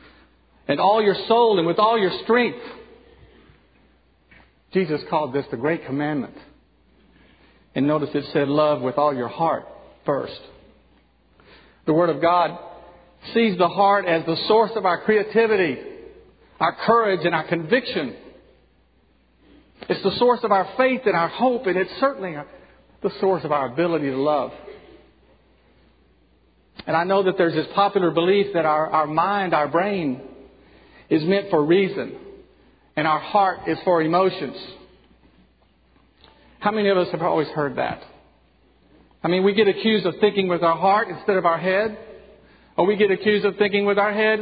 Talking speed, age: 160 wpm, 50-69